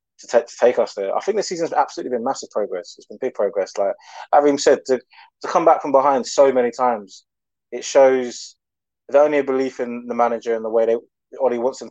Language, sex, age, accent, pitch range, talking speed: English, male, 20-39, British, 115-150 Hz, 235 wpm